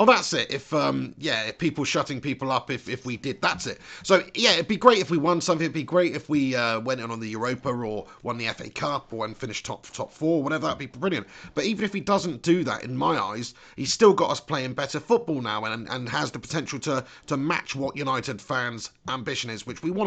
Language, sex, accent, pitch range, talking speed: English, male, British, 125-170 Hz, 255 wpm